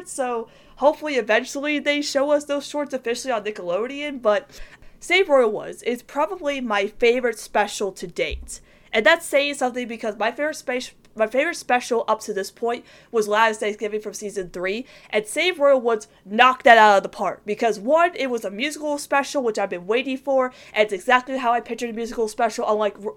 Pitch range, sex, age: 195-240 Hz, female, 20-39